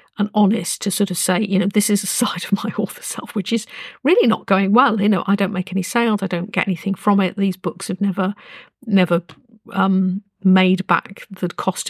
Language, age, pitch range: English, 50-69, 185-210 Hz